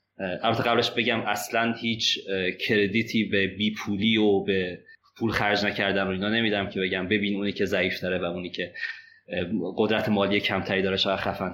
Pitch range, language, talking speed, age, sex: 95-115 Hz, Persian, 165 wpm, 30-49, male